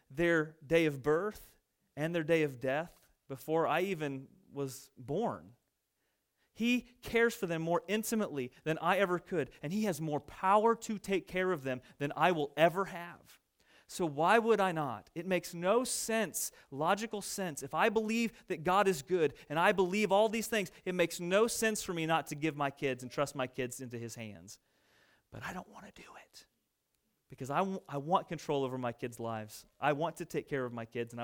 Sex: male